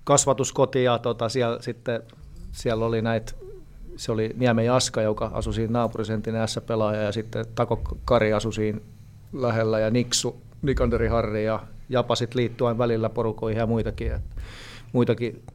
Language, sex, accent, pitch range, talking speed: Finnish, male, native, 110-135 Hz, 145 wpm